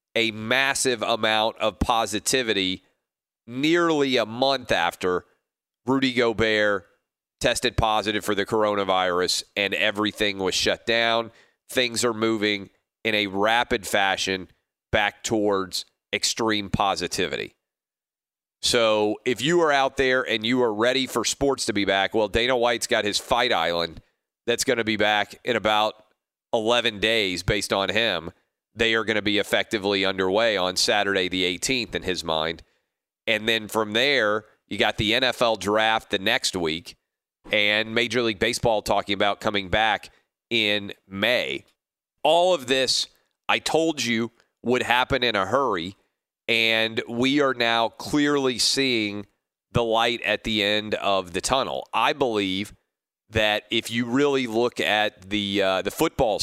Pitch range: 100-120 Hz